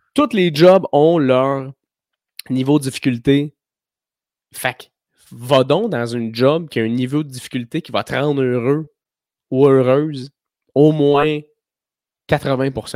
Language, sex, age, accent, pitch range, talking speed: French, male, 20-39, Canadian, 125-160 Hz, 140 wpm